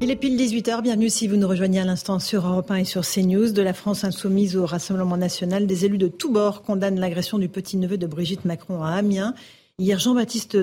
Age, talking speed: 40-59, 225 wpm